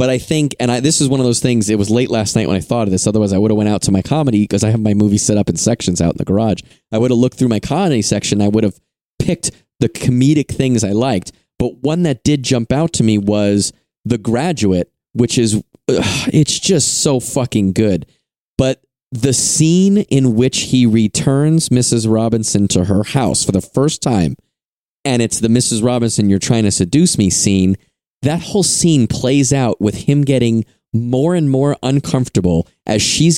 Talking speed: 210 wpm